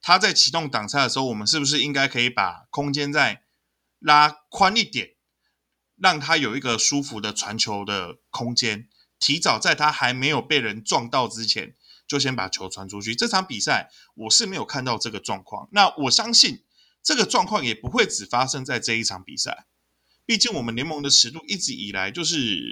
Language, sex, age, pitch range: Chinese, male, 20-39, 110-155 Hz